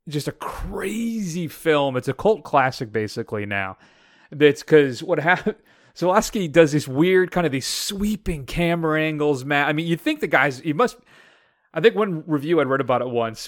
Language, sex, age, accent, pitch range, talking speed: English, male, 30-49, American, 125-160 Hz, 185 wpm